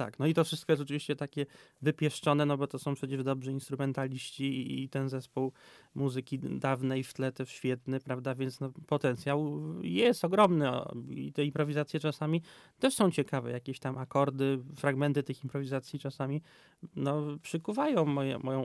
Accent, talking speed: native, 160 wpm